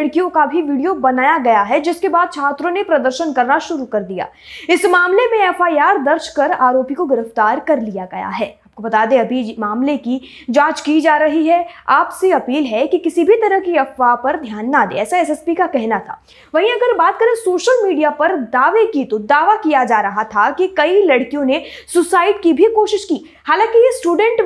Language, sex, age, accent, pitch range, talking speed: Hindi, female, 20-39, native, 260-355 Hz, 100 wpm